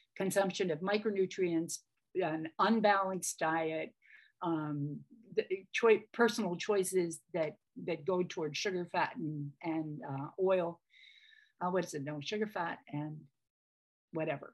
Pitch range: 165-210 Hz